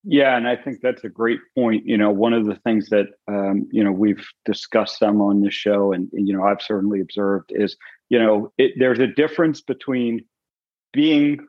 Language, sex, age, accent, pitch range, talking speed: English, male, 40-59, American, 100-125 Hz, 205 wpm